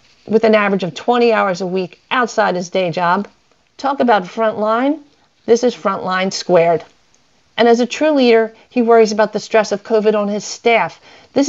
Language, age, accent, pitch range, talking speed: English, 40-59, American, 185-230 Hz, 185 wpm